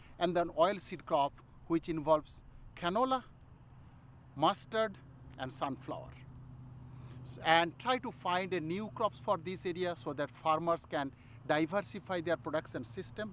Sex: male